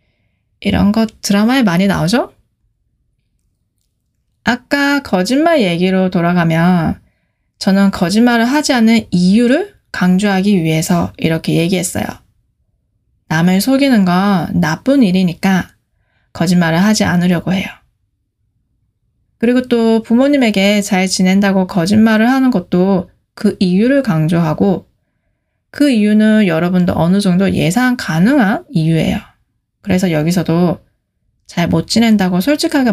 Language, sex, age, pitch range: Korean, female, 20-39, 175-230 Hz